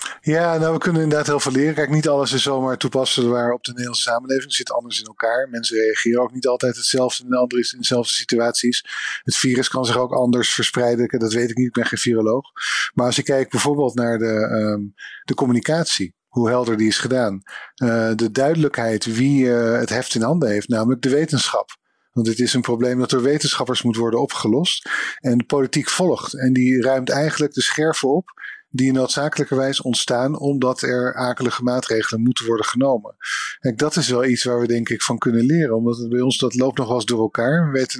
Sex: male